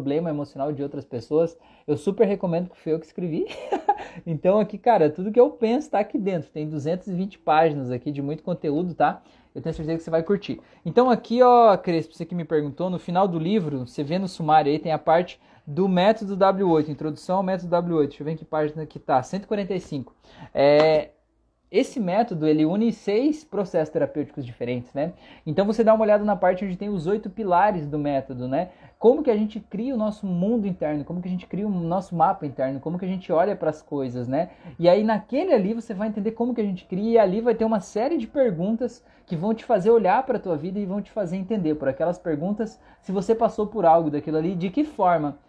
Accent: Brazilian